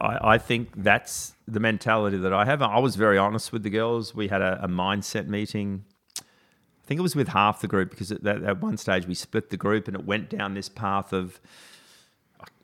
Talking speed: 220 wpm